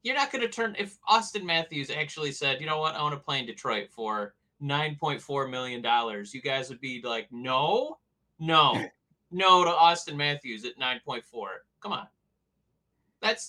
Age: 30-49